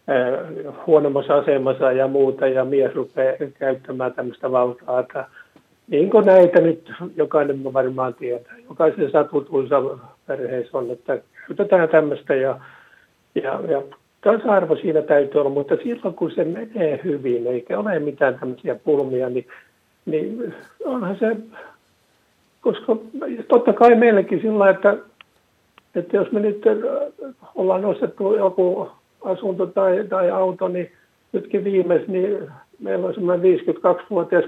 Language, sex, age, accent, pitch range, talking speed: Finnish, male, 60-79, native, 150-205 Hz, 125 wpm